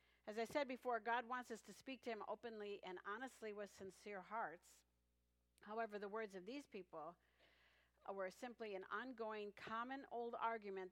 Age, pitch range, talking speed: 50-69, 185-230 Hz, 165 wpm